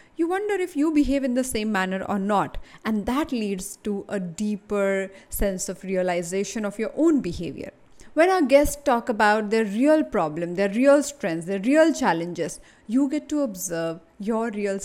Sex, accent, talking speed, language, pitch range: female, Indian, 180 wpm, English, 195-265 Hz